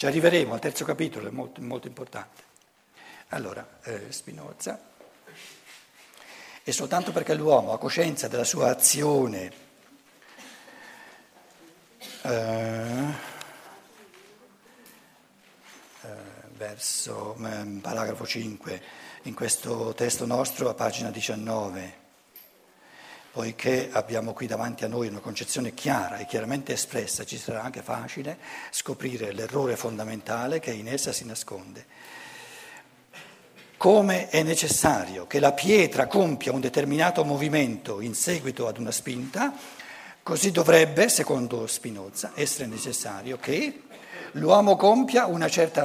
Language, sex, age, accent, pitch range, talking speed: Italian, male, 60-79, native, 115-165 Hz, 110 wpm